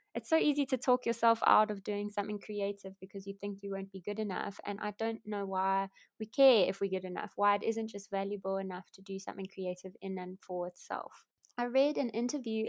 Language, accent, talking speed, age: English, British, 225 wpm, 20-39